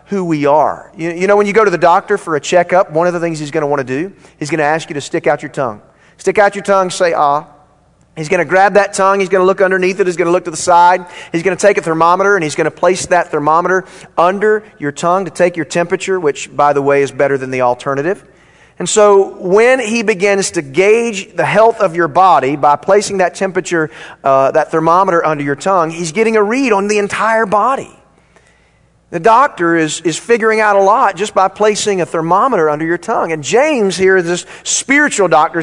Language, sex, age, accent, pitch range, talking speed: English, male, 40-59, American, 150-200 Hz, 235 wpm